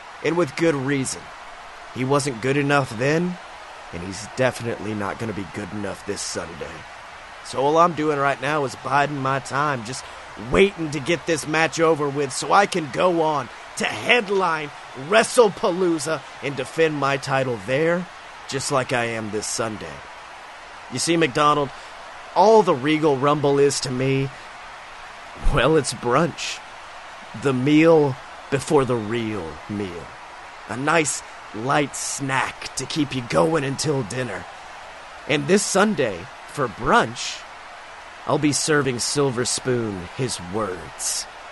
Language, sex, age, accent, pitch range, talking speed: English, male, 30-49, American, 120-155 Hz, 140 wpm